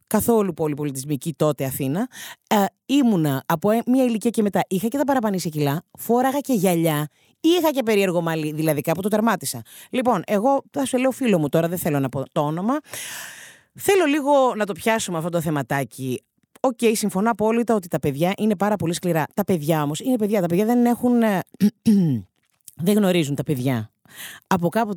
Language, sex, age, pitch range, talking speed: Greek, female, 30-49, 145-220 Hz, 180 wpm